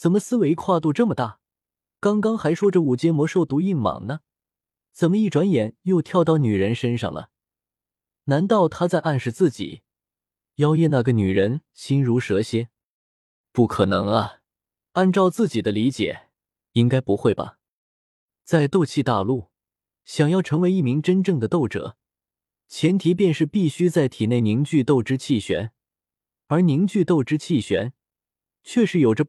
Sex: male